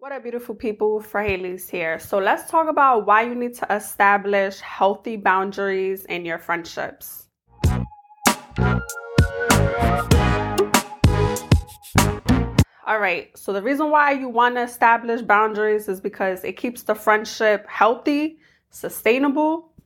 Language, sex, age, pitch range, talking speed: English, female, 20-39, 195-245 Hz, 120 wpm